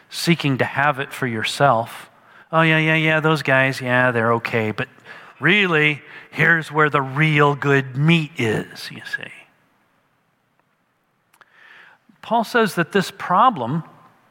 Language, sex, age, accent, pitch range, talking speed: English, male, 40-59, American, 140-175 Hz, 130 wpm